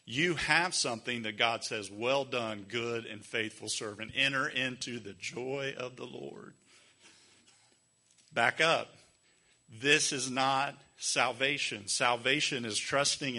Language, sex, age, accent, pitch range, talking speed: English, male, 40-59, American, 120-165 Hz, 125 wpm